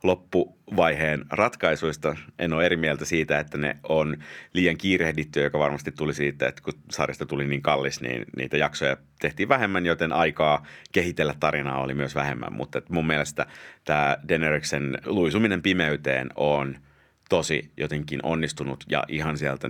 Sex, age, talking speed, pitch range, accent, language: male, 30-49, 145 wpm, 70-80 Hz, native, Finnish